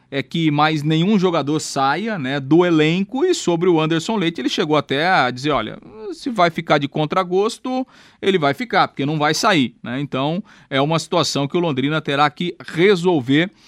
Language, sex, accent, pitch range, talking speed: Portuguese, male, Brazilian, 140-180 Hz, 195 wpm